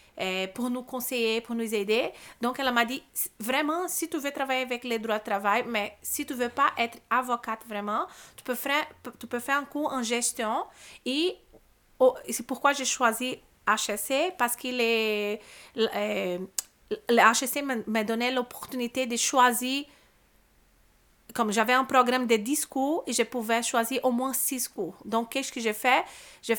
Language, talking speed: French, 170 wpm